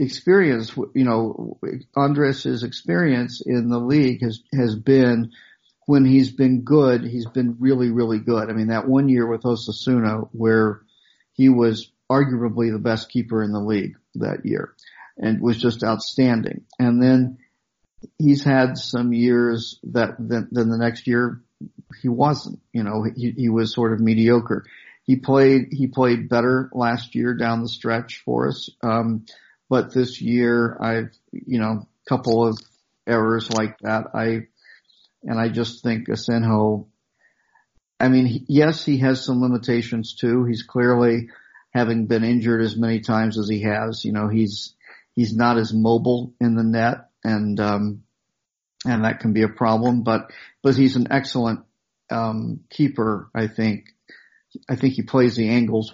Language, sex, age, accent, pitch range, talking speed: English, male, 50-69, American, 110-125 Hz, 160 wpm